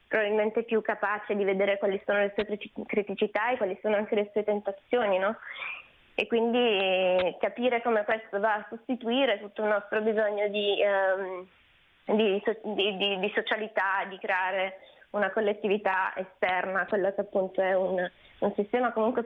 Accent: native